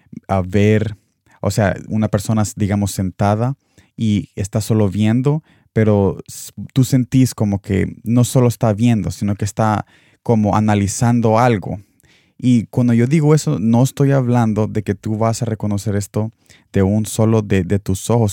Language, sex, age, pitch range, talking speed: Spanish, male, 20-39, 100-120 Hz, 160 wpm